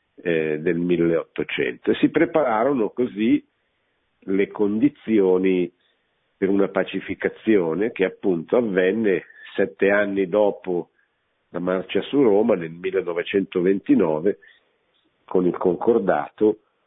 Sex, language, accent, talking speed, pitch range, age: male, Italian, native, 95 wpm, 85-115 Hz, 50-69